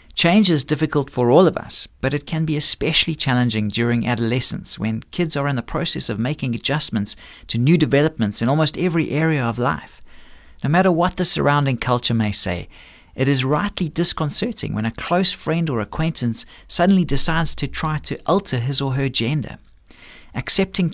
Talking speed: 180 wpm